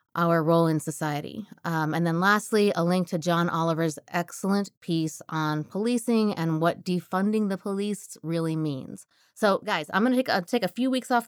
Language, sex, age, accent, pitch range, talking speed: English, female, 20-39, American, 165-220 Hz, 180 wpm